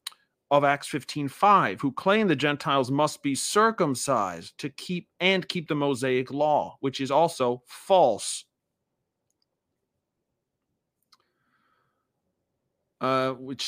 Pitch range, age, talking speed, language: 130-180 Hz, 40-59, 105 wpm, English